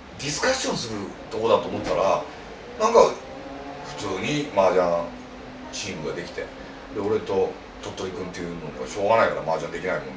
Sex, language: male, Japanese